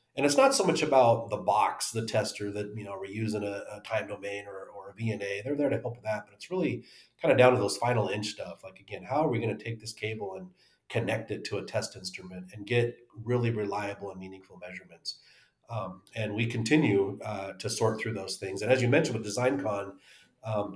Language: English